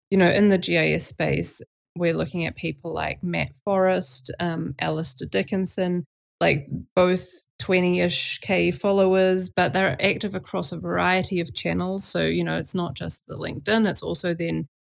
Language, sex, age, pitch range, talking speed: English, female, 30-49, 175-210 Hz, 160 wpm